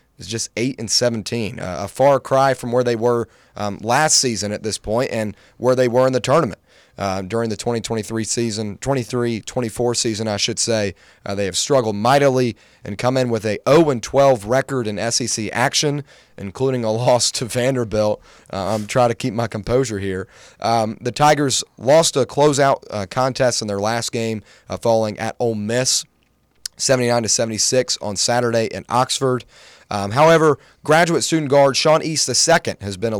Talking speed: 180 wpm